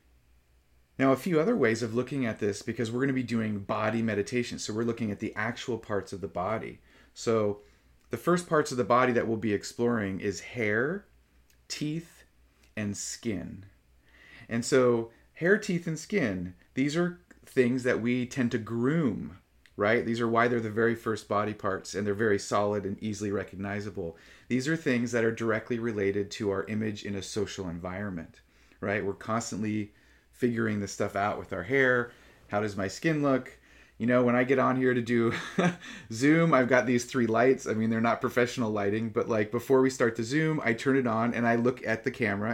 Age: 30-49